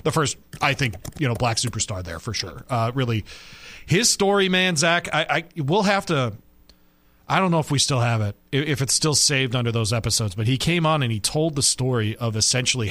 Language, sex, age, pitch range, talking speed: English, male, 30-49, 115-150 Hz, 225 wpm